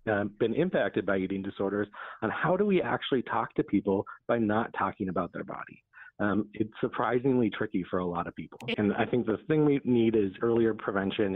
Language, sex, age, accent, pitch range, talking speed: English, male, 30-49, American, 100-115 Hz, 205 wpm